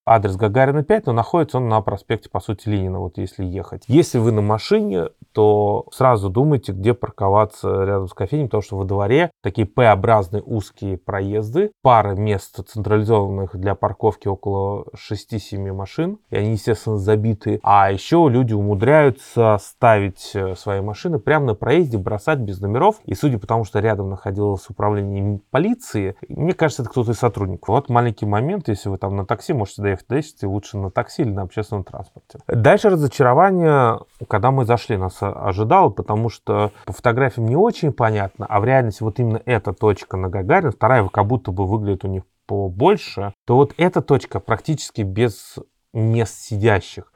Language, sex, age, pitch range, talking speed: Russian, male, 30-49, 100-130 Hz, 165 wpm